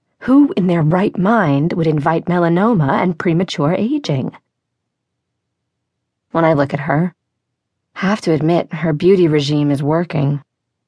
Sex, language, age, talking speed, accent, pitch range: female, English, 30-49, 140 wpm, American, 140-175 Hz